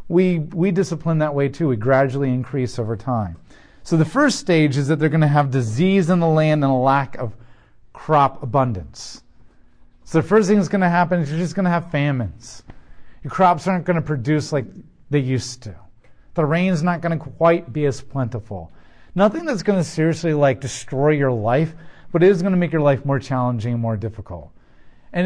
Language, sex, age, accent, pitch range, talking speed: English, male, 40-59, American, 125-175 Hz, 210 wpm